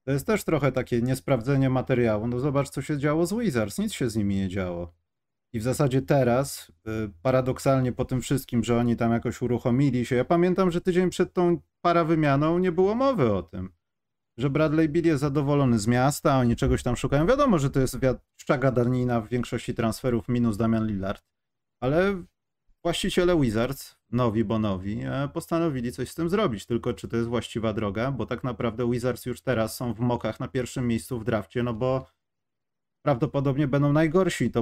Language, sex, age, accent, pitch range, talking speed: Polish, male, 30-49, native, 110-150 Hz, 185 wpm